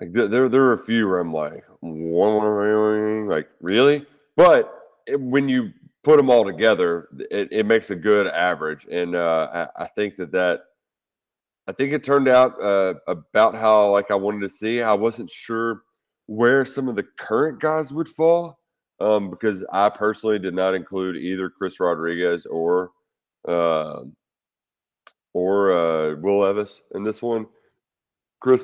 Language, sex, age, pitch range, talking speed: English, male, 30-49, 90-130 Hz, 170 wpm